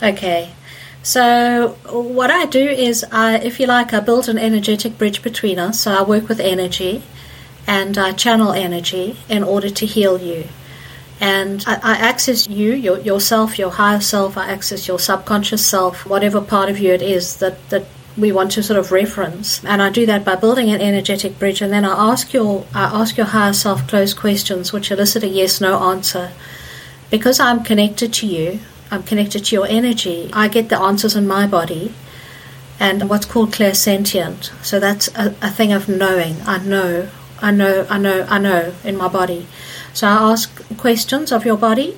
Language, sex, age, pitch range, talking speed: English, female, 50-69, 190-220 Hz, 190 wpm